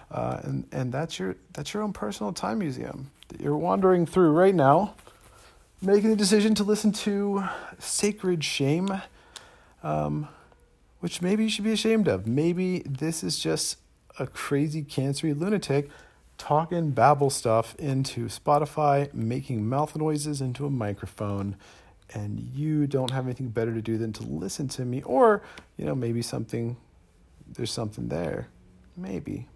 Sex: male